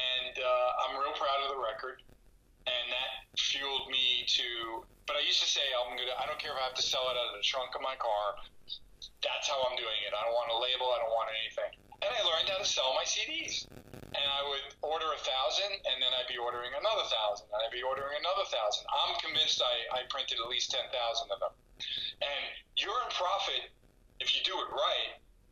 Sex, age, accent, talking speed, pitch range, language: male, 40-59, American, 220 wpm, 120-150 Hz, English